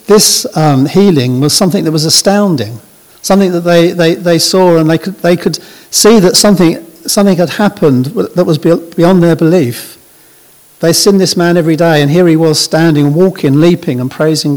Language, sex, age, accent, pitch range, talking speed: English, male, 50-69, British, 145-185 Hz, 185 wpm